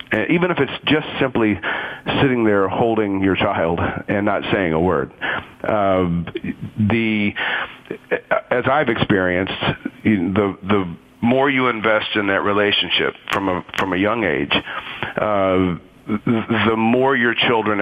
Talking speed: 130 wpm